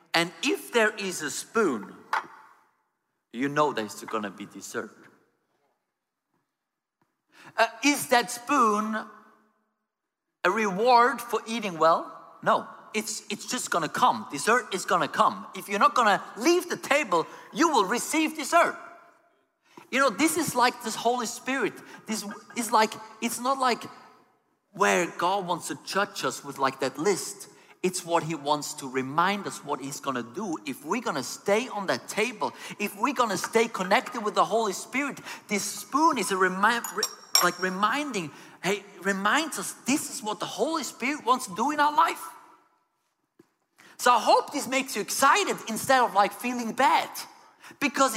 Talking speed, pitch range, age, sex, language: 165 wpm, 180-260 Hz, 50-69, male, English